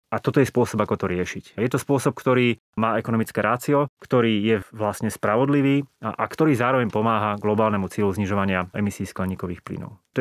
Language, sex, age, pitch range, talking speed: Slovak, male, 30-49, 100-125 Hz, 180 wpm